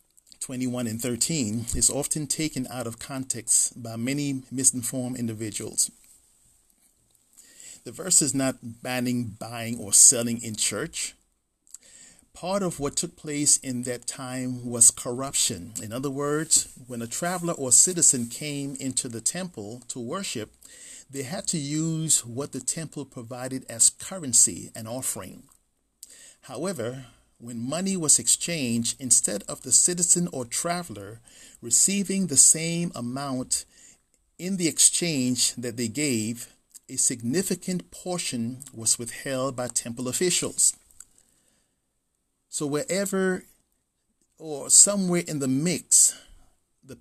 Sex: male